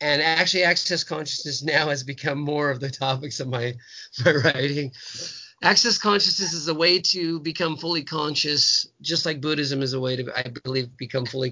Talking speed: 180 wpm